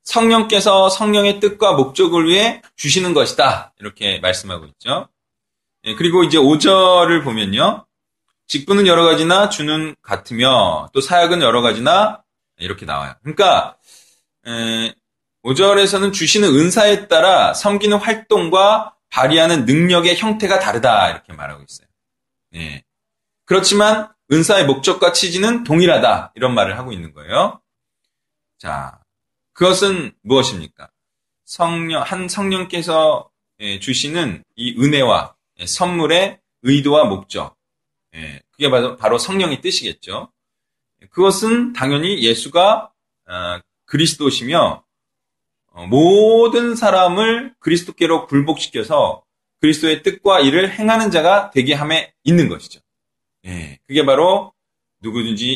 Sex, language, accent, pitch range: male, Korean, native, 120-195 Hz